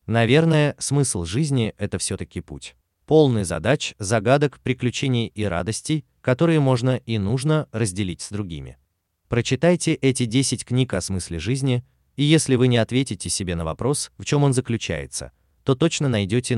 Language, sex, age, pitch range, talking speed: Russian, male, 30-49, 85-130 Hz, 150 wpm